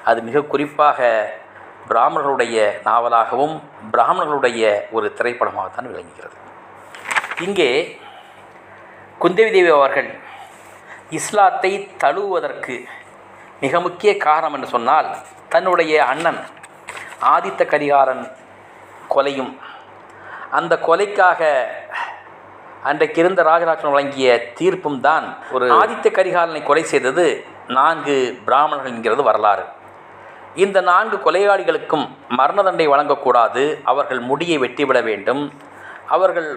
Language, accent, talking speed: Tamil, native, 85 wpm